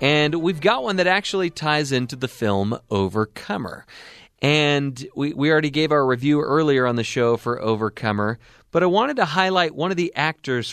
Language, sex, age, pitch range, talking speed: English, male, 30-49, 115-165 Hz, 185 wpm